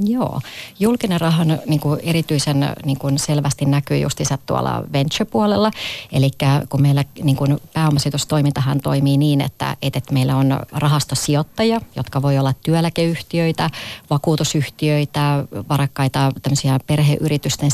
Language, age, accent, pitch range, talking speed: Finnish, 30-49, native, 140-165 Hz, 105 wpm